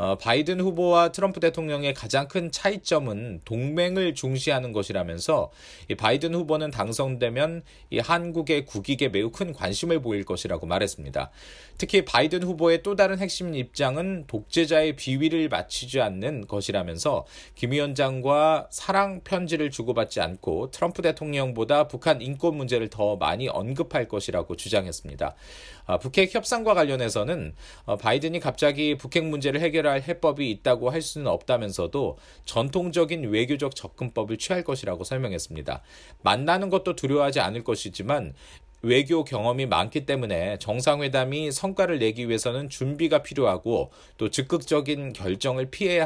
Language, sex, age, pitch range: Korean, male, 40-59, 120-165 Hz